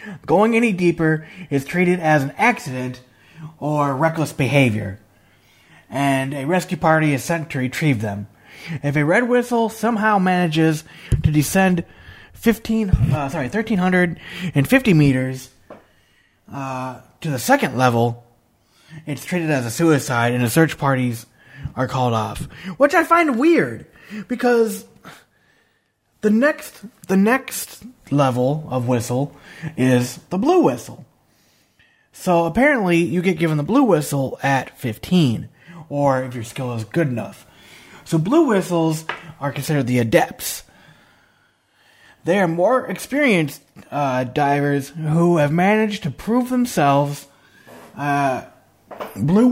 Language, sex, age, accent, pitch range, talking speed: English, male, 30-49, American, 135-185 Hz, 130 wpm